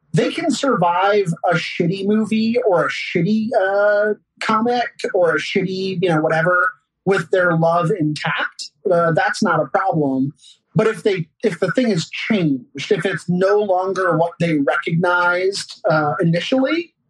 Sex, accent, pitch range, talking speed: male, American, 155-200 Hz, 150 wpm